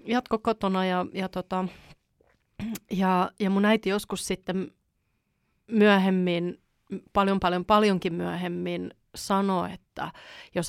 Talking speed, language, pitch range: 105 wpm, Finnish, 175-195 Hz